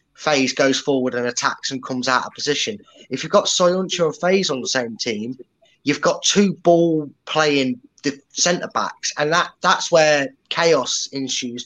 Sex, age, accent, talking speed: male, 20-39, British, 170 wpm